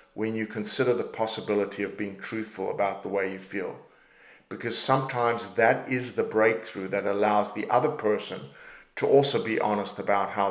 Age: 50-69